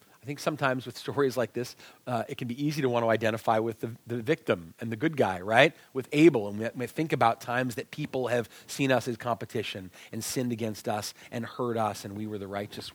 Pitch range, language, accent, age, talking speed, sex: 115-150 Hz, English, American, 40-59, 240 wpm, male